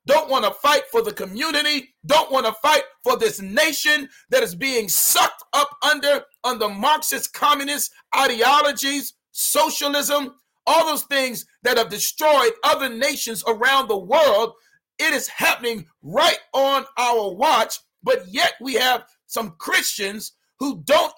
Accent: American